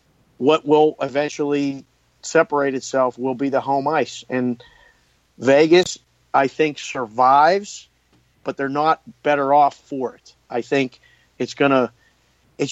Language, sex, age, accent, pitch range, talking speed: English, male, 50-69, American, 130-155 Hz, 125 wpm